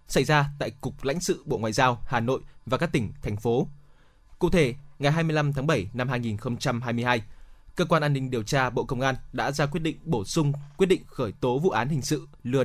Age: 20-39